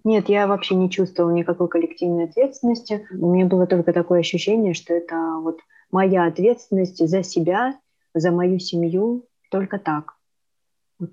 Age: 20-39